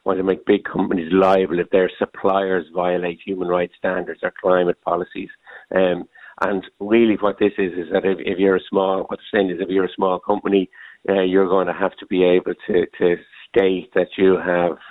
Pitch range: 90-95 Hz